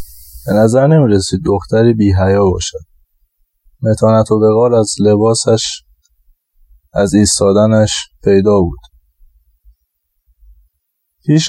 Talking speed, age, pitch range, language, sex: 90 wpm, 20-39, 75-115 Hz, Persian, male